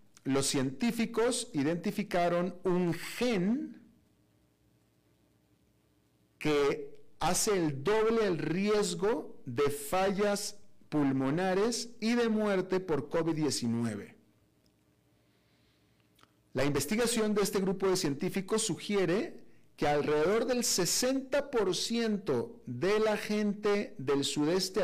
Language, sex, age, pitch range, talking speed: Spanish, male, 40-59, 130-200 Hz, 85 wpm